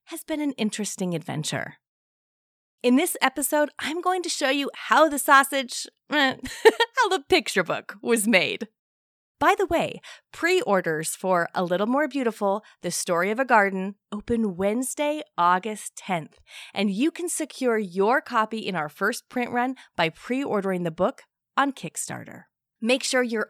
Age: 30-49